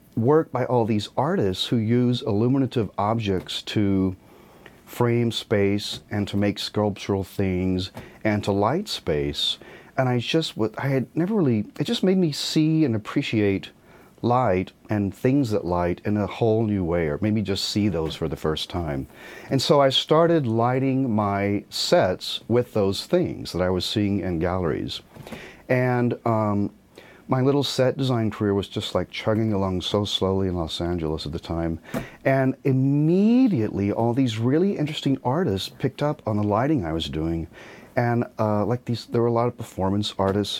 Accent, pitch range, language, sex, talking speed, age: American, 90-120 Hz, English, male, 175 wpm, 40-59